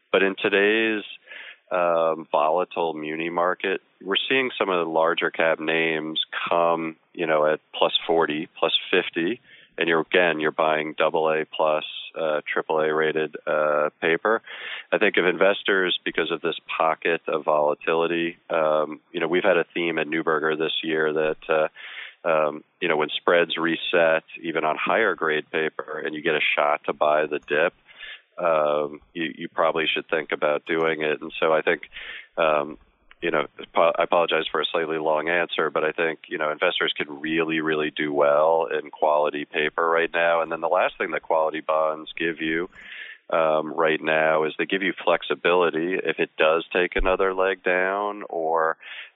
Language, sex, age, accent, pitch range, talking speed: English, male, 40-59, American, 75-85 Hz, 175 wpm